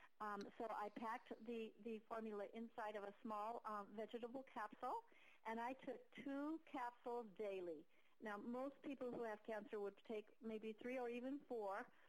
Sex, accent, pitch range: female, American, 210-250 Hz